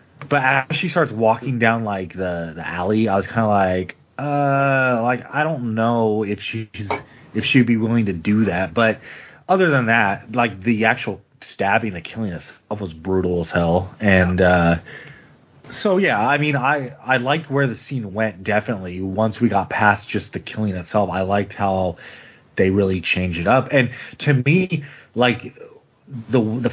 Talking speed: 180 wpm